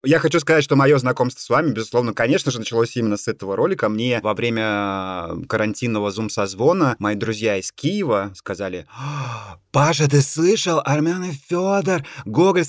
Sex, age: male, 20-39